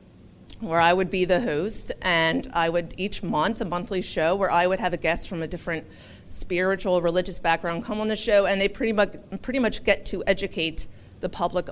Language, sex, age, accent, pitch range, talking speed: English, female, 30-49, American, 150-190 Hz, 210 wpm